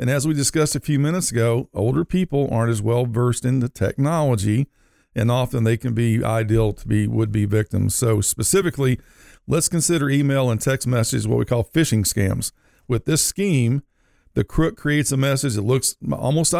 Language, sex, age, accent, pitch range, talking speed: English, male, 50-69, American, 115-145 Hz, 185 wpm